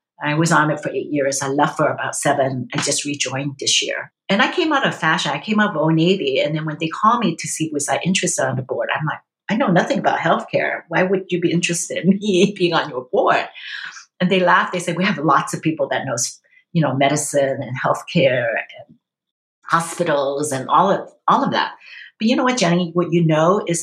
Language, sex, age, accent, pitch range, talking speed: English, female, 50-69, American, 150-185 Hz, 240 wpm